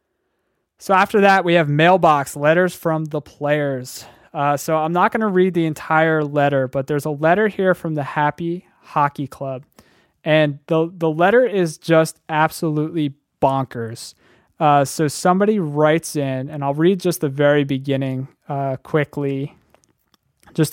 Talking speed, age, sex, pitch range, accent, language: 155 wpm, 20-39, male, 140-165 Hz, American, English